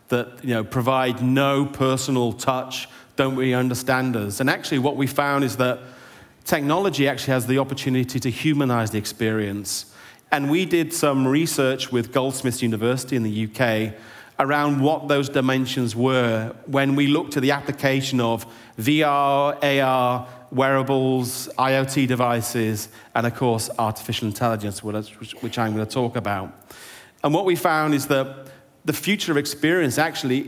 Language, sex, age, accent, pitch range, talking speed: English, male, 40-59, British, 120-140 Hz, 150 wpm